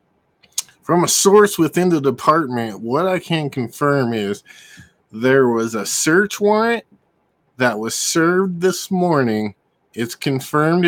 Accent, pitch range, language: American, 130-195 Hz, English